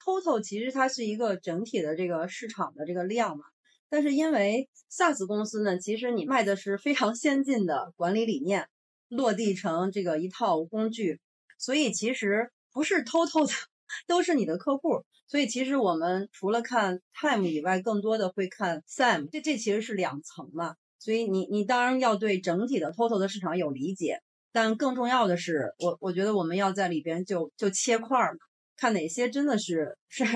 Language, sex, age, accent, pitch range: Chinese, female, 30-49, native, 180-235 Hz